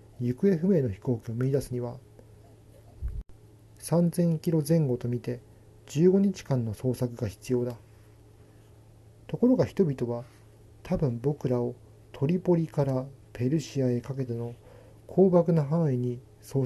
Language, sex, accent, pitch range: Japanese, male, native, 110-140 Hz